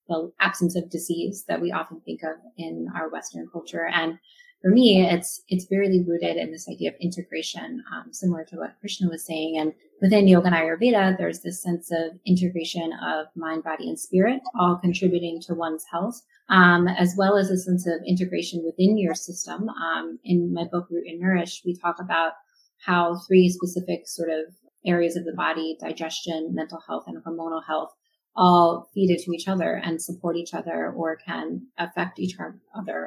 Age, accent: 30-49, American